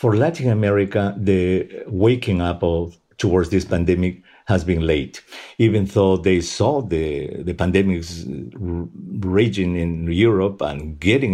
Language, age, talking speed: English, 50-69, 125 wpm